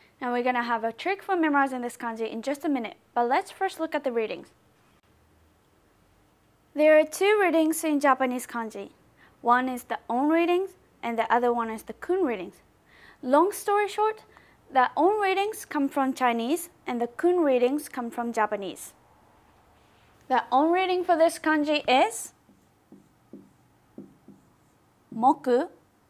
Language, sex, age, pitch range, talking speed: English, female, 20-39, 240-330 Hz, 150 wpm